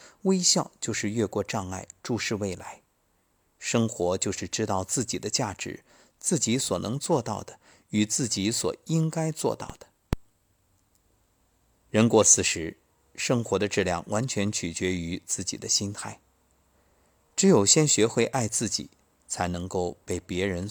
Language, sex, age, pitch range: Chinese, male, 50-69, 90-115 Hz